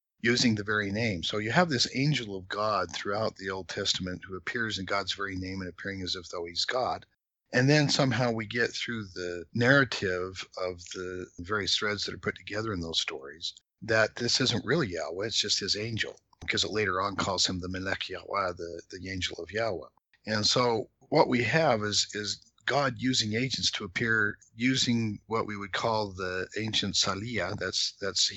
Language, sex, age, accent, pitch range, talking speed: English, male, 50-69, American, 95-125 Hz, 195 wpm